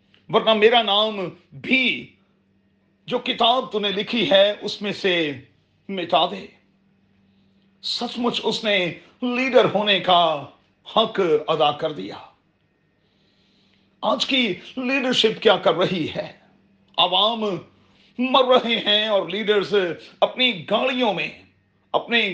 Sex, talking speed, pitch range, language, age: male, 115 wpm, 165-230 Hz, Urdu, 40-59